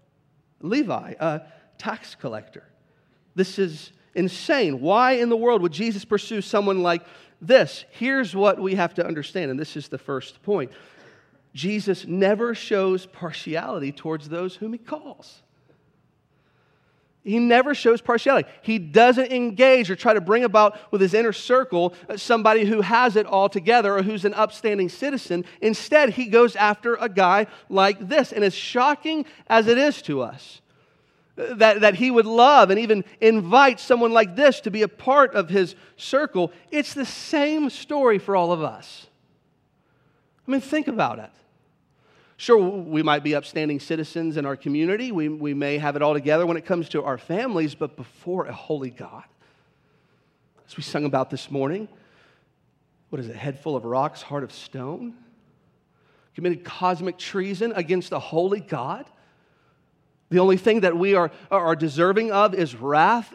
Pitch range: 155-225 Hz